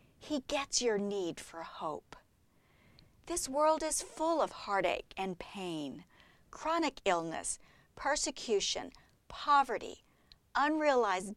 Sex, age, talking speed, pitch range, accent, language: female, 50-69, 100 wpm, 220-295 Hz, American, English